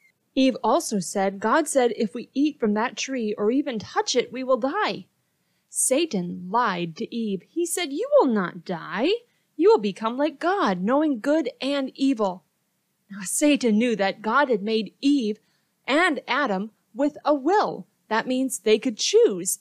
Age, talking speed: 30-49, 170 wpm